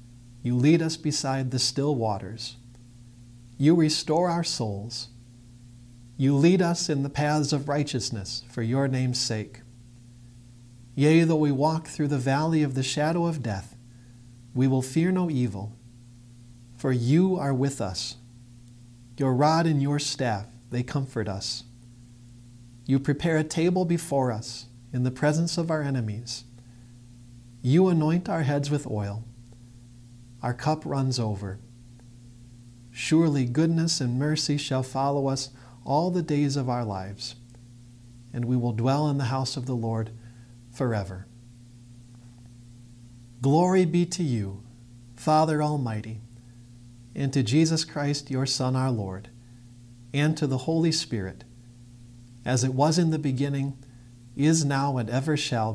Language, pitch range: English, 120-145 Hz